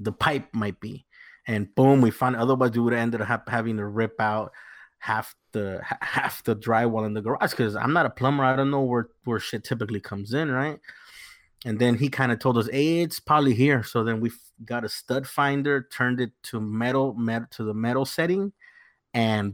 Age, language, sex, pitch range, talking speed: 30-49, English, male, 110-130 Hz, 215 wpm